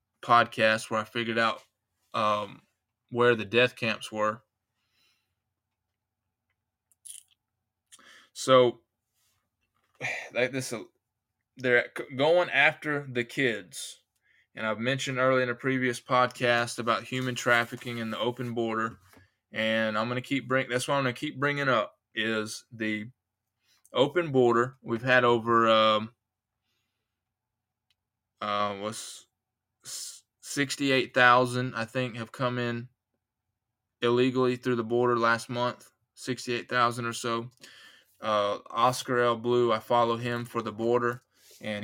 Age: 20-39